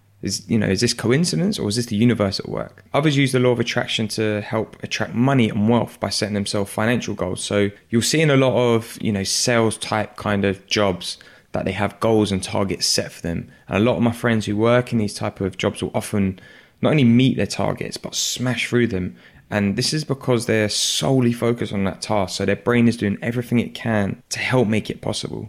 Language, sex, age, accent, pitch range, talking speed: English, male, 20-39, British, 100-120 Hz, 235 wpm